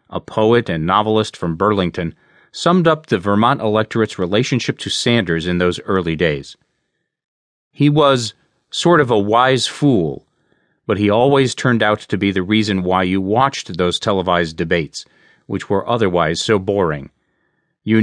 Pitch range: 95-125 Hz